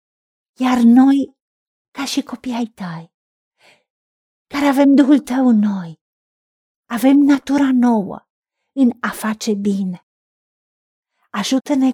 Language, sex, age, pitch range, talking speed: Romanian, female, 50-69, 205-255 Hz, 100 wpm